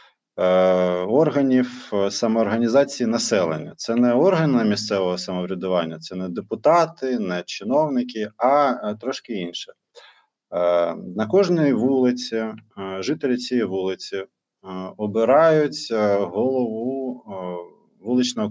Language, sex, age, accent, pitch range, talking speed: Ukrainian, male, 20-39, native, 105-140 Hz, 80 wpm